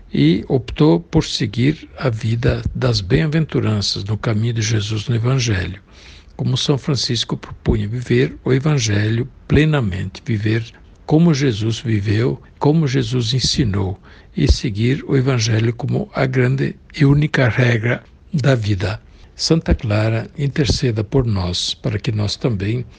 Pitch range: 105-140 Hz